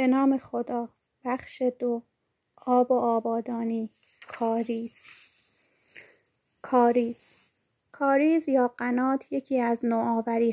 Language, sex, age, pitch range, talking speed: Persian, female, 30-49, 225-255 Hz, 90 wpm